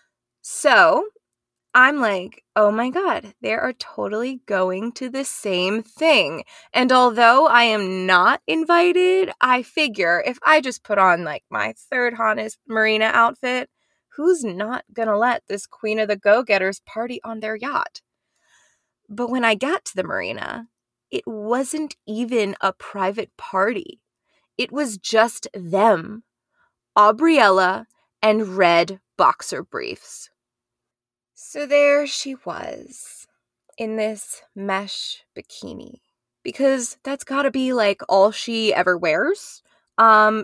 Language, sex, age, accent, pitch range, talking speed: English, female, 20-39, American, 205-275 Hz, 130 wpm